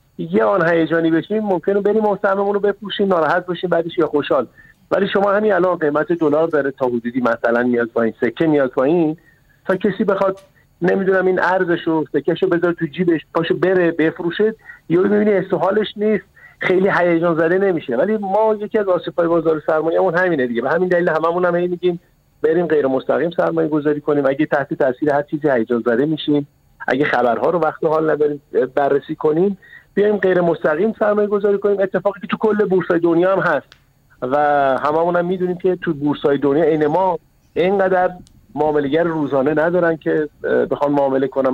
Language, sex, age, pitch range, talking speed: Persian, male, 50-69, 150-190 Hz, 170 wpm